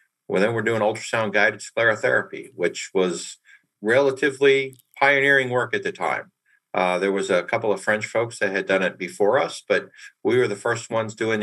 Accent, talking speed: American, 190 wpm